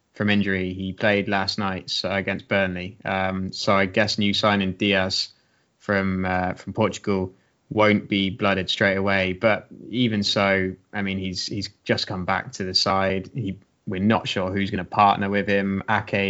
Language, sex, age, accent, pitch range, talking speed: English, male, 20-39, British, 95-110 Hz, 180 wpm